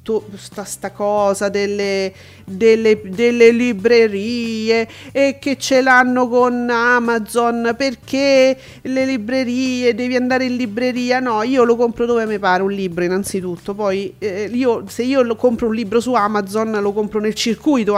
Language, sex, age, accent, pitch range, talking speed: Italian, female, 40-59, native, 200-240 Hz, 145 wpm